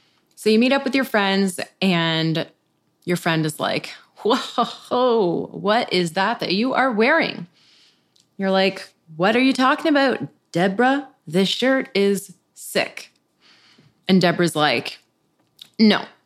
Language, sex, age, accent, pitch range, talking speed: English, female, 20-39, American, 170-230 Hz, 135 wpm